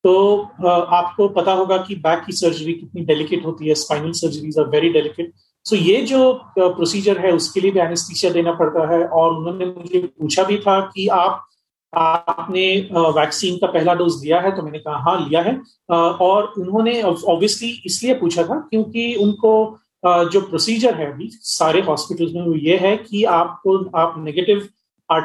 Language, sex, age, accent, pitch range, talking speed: Hindi, male, 40-59, native, 165-195 Hz, 170 wpm